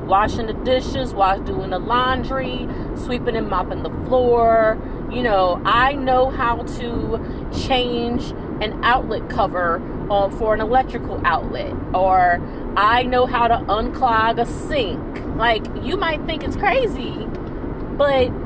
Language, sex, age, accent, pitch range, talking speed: English, female, 30-49, American, 225-260 Hz, 135 wpm